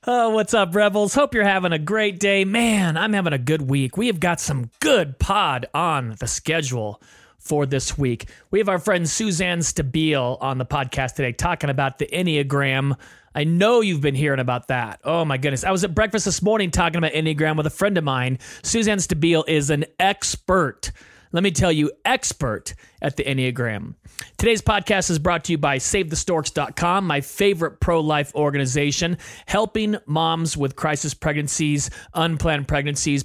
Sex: male